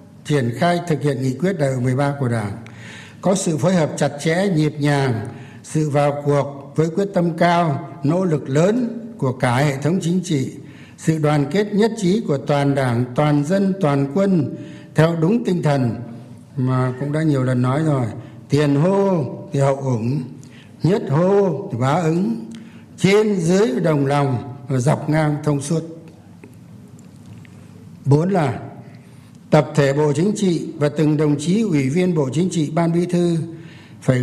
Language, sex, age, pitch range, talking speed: Vietnamese, male, 60-79, 135-180 Hz, 170 wpm